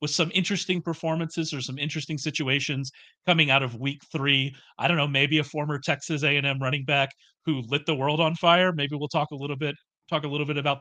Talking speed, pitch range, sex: 220 wpm, 135-175 Hz, male